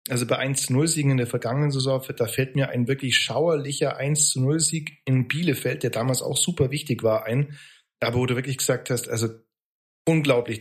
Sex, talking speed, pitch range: male, 175 wpm, 125-145 Hz